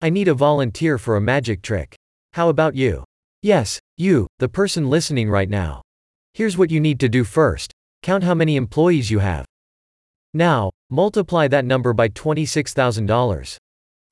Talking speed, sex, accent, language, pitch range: 155 wpm, male, American, English, 110-155 Hz